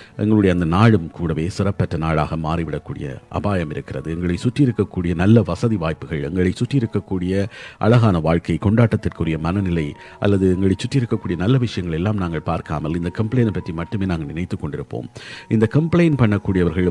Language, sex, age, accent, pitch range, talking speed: Tamil, male, 50-69, native, 85-105 Hz, 145 wpm